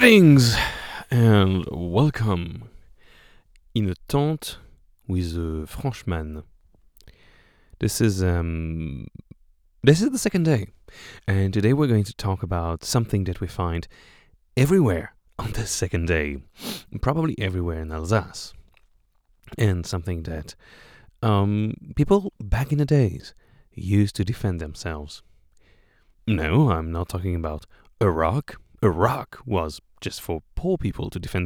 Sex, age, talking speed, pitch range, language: male, 30-49, 120 wpm, 85-125 Hz, English